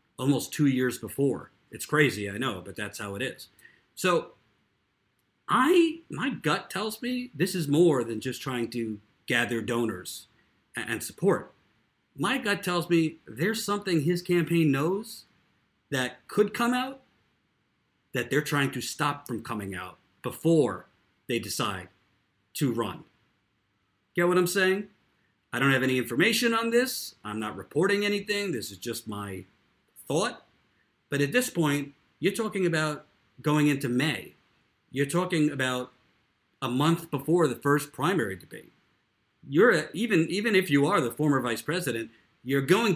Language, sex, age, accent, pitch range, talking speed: English, male, 40-59, American, 120-175 Hz, 150 wpm